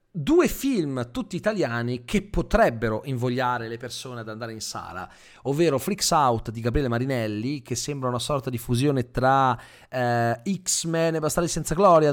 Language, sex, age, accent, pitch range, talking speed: Italian, male, 30-49, native, 120-170 Hz, 160 wpm